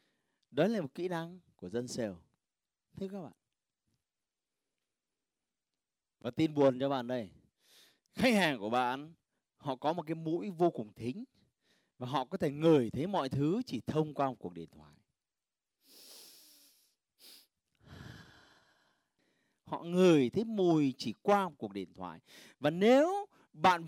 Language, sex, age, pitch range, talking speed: Vietnamese, male, 30-49, 125-200 Hz, 145 wpm